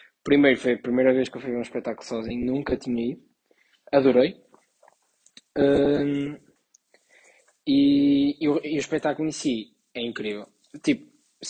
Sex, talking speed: male, 145 wpm